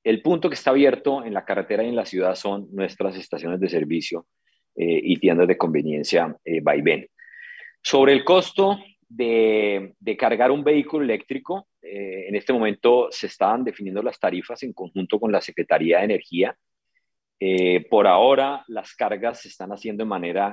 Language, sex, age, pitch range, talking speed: Spanish, male, 40-59, 100-145 Hz, 175 wpm